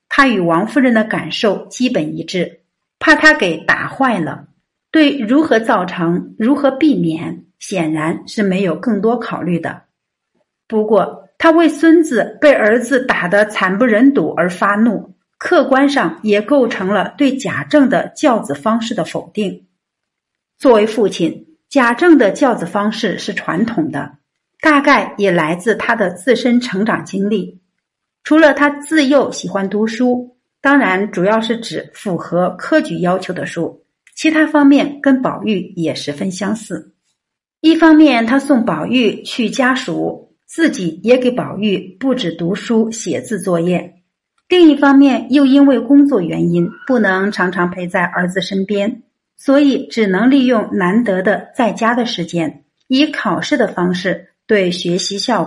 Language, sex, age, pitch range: Chinese, female, 50-69, 180-270 Hz